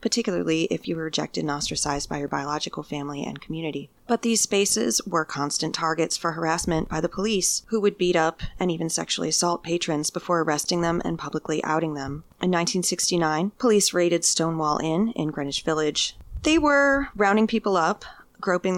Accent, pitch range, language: American, 160-195 Hz, English